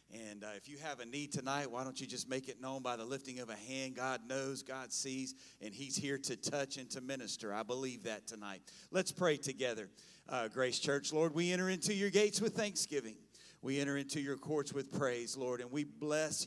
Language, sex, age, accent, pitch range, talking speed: English, male, 40-59, American, 130-165 Hz, 225 wpm